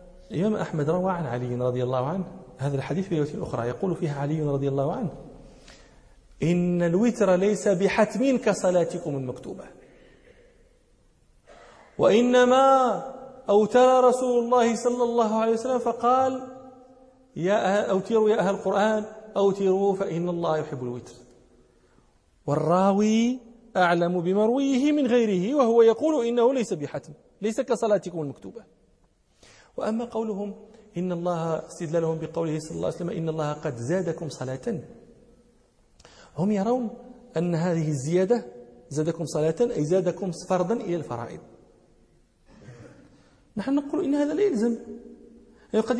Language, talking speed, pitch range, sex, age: English, 115 wpm, 165-245 Hz, male, 40-59